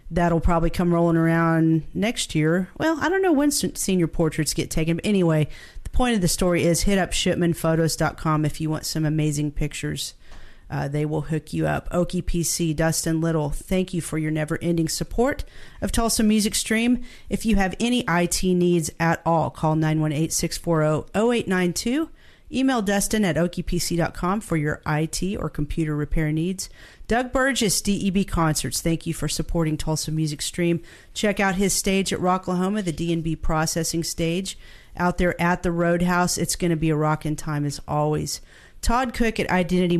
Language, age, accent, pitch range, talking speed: English, 40-59, American, 155-185 Hz, 175 wpm